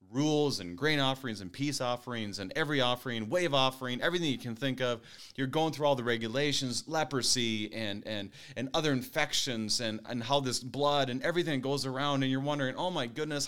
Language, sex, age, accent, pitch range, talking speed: English, male, 30-49, American, 100-130 Hz, 195 wpm